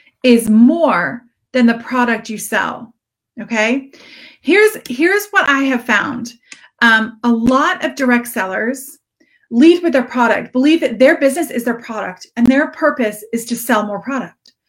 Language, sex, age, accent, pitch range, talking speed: English, female, 30-49, American, 215-275 Hz, 160 wpm